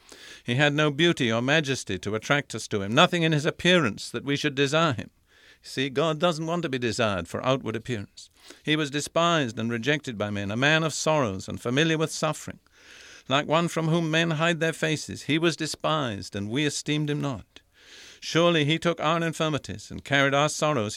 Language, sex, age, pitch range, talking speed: English, male, 60-79, 115-155 Hz, 200 wpm